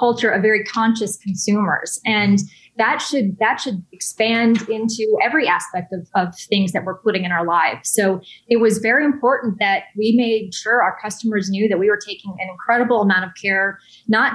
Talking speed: 190 wpm